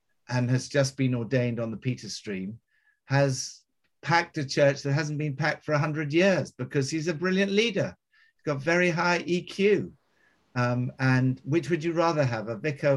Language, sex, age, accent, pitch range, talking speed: English, male, 50-69, British, 130-165 Hz, 180 wpm